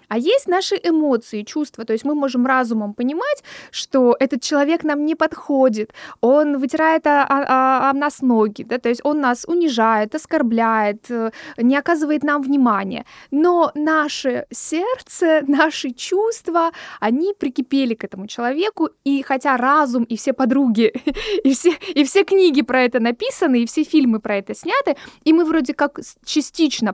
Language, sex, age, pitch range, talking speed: Russian, female, 20-39, 230-310 Hz, 145 wpm